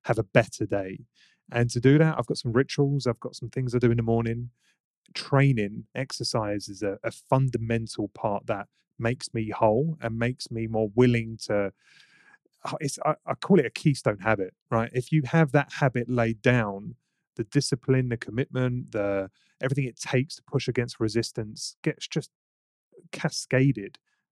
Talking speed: 170 wpm